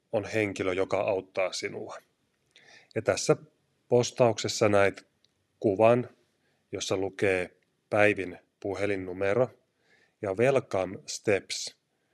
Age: 30-49